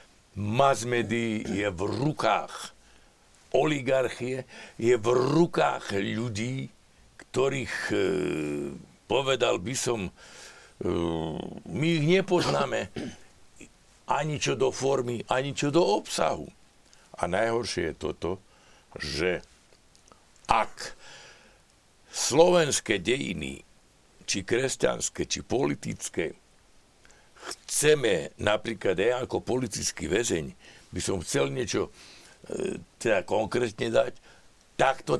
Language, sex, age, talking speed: Slovak, male, 60-79, 85 wpm